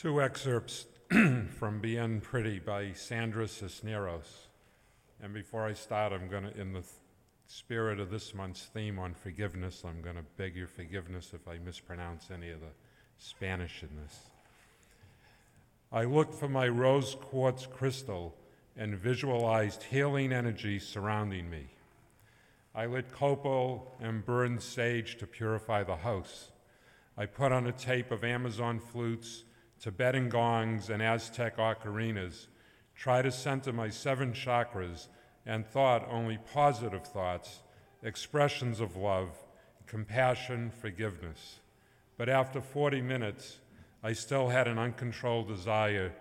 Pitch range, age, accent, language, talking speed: 100-120 Hz, 50-69, American, English, 130 wpm